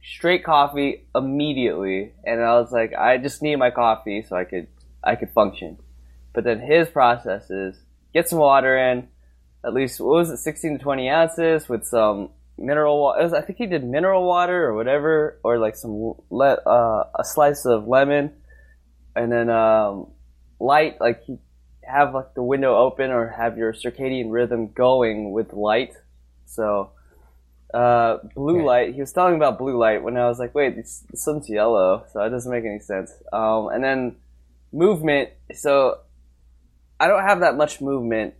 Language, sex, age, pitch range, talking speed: English, male, 10-29, 95-140 Hz, 170 wpm